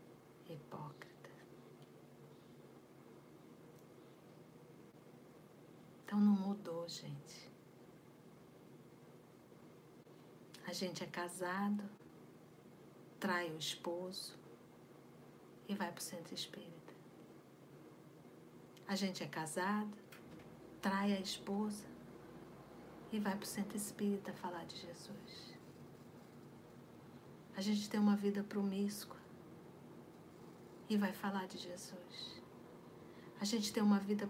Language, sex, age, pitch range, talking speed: Portuguese, female, 50-69, 175-205 Hz, 85 wpm